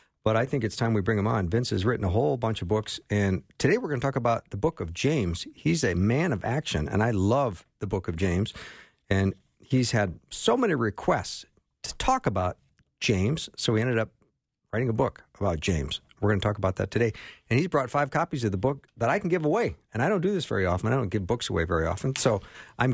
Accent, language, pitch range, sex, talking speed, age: American, English, 100-130 Hz, male, 250 wpm, 50-69